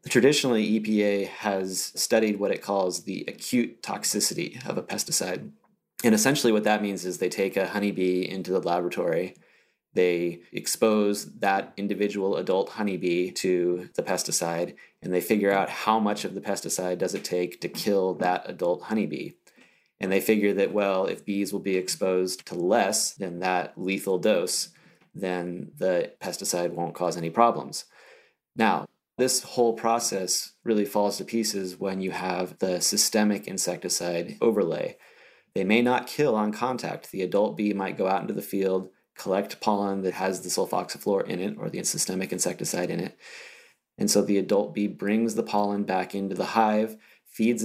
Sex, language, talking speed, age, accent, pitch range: male, English, 165 wpm, 30-49, American, 90-105 Hz